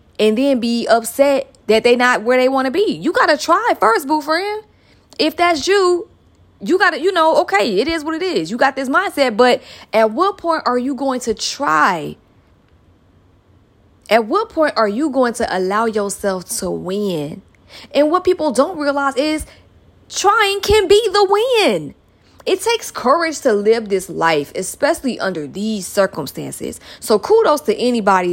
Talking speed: 175 wpm